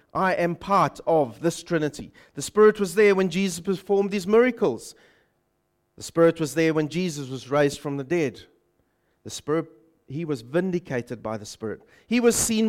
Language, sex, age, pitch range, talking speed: English, male, 40-59, 155-215 Hz, 175 wpm